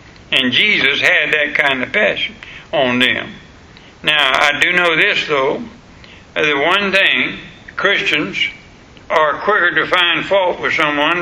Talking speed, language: 140 wpm, English